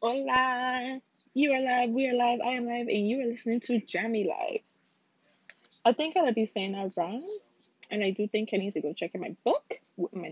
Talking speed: 220 wpm